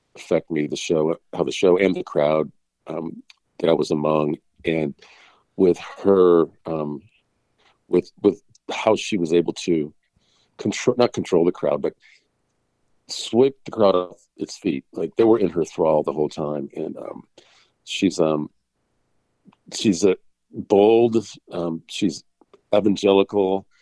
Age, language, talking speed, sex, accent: 50-69, English, 145 wpm, male, American